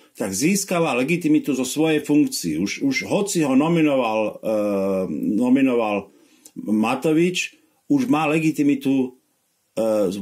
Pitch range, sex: 120-175 Hz, male